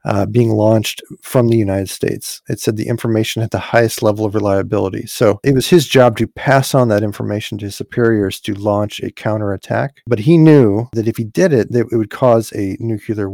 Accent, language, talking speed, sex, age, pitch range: American, English, 215 wpm, male, 40-59, 105-125 Hz